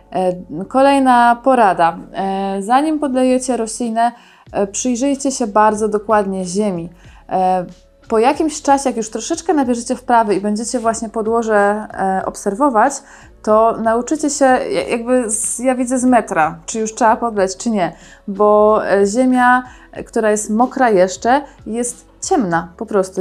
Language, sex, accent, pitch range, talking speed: Polish, female, native, 205-255 Hz, 120 wpm